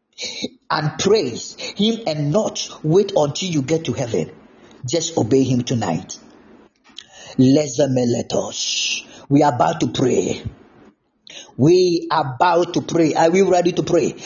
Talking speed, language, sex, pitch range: 140 wpm, English, male, 170-230 Hz